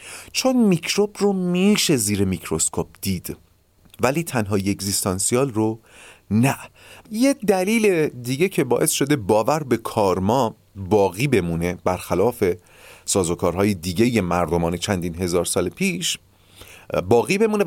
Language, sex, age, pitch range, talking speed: Persian, male, 40-59, 95-155 Hz, 115 wpm